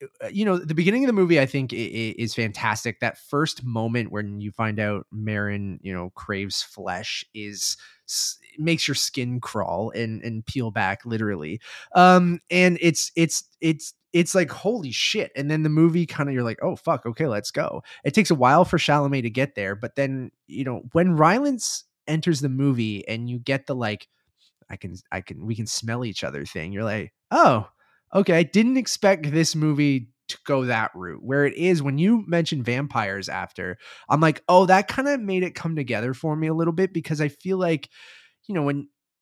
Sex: male